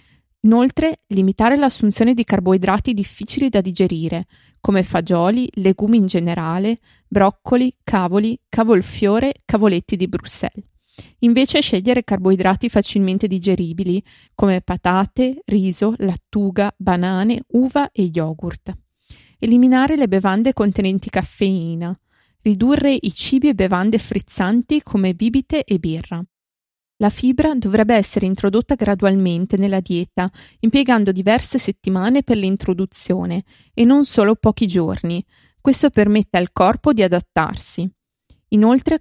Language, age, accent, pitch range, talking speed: Italian, 20-39, native, 185-230 Hz, 110 wpm